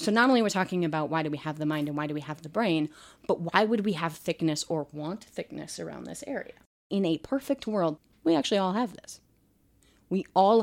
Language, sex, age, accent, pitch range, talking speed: English, female, 30-49, American, 155-195 Hz, 235 wpm